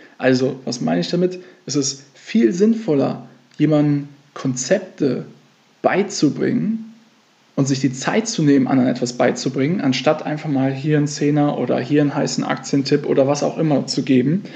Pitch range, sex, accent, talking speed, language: 135-175 Hz, male, German, 155 wpm, German